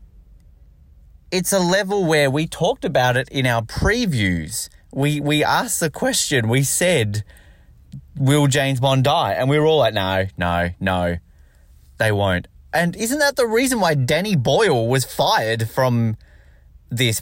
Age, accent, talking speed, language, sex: 20-39, Australian, 155 wpm, English, male